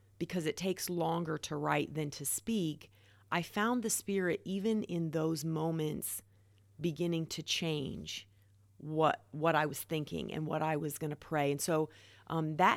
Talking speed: 170 wpm